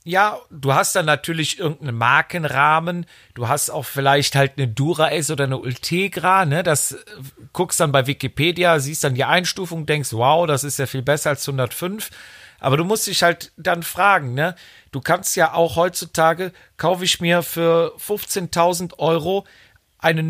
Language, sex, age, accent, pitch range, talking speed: German, male, 40-59, German, 155-190 Hz, 170 wpm